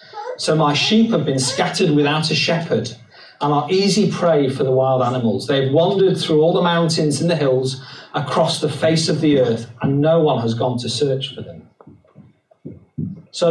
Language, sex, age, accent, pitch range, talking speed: English, male, 40-59, British, 135-175 Hz, 185 wpm